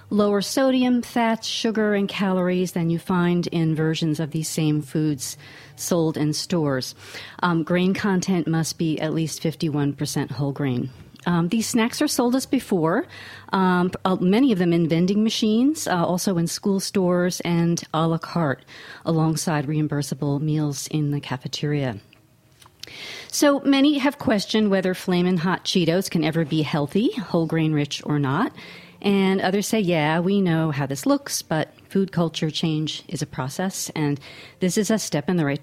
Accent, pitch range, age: American, 150-200 Hz, 40-59